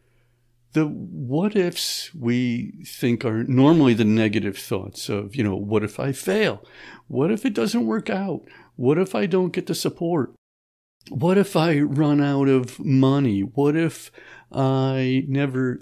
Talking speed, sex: 150 wpm, male